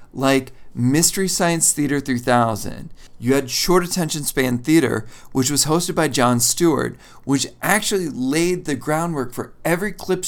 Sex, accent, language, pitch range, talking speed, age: male, American, English, 125-175 Hz, 145 wpm, 40-59